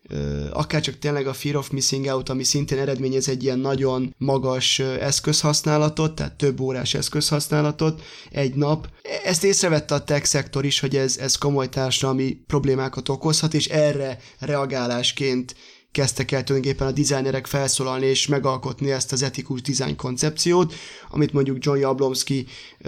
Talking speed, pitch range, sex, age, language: 140 wpm, 130-150 Hz, male, 20-39, Hungarian